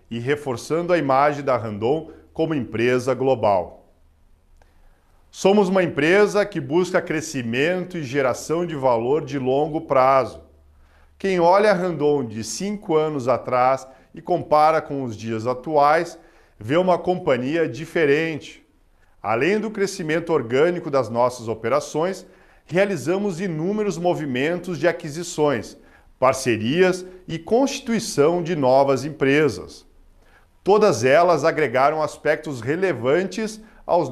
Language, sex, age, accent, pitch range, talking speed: Portuguese, male, 40-59, Brazilian, 130-175 Hz, 115 wpm